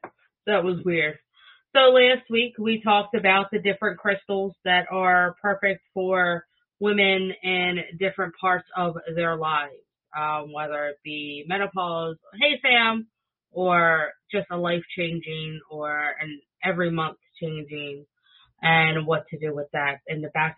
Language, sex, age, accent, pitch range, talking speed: English, female, 20-39, American, 150-175 Hz, 145 wpm